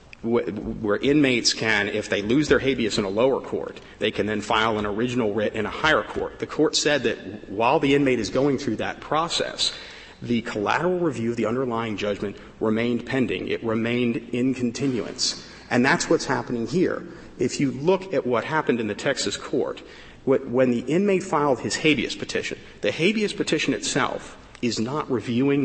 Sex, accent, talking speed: male, American, 180 wpm